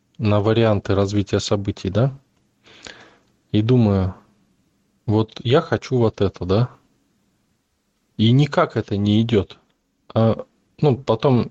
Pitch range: 100-130 Hz